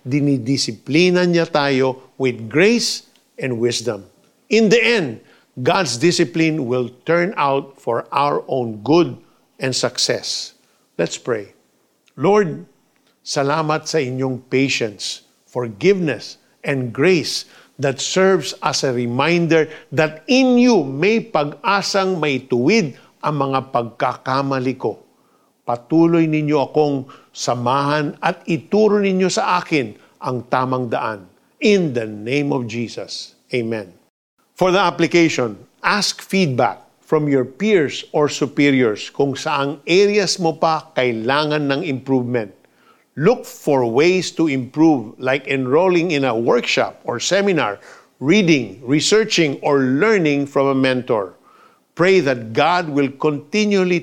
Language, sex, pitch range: Filipino, male, 130-170 Hz